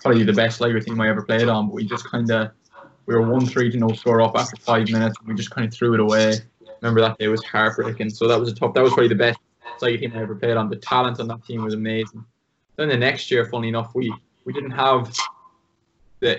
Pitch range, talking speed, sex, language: 110-120 Hz, 255 wpm, male, English